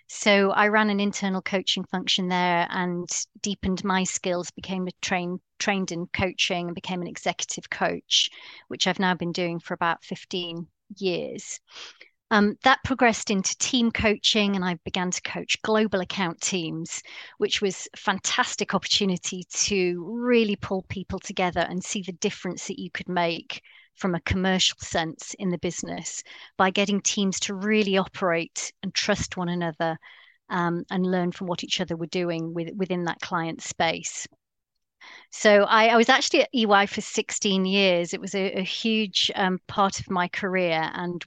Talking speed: 170 wpm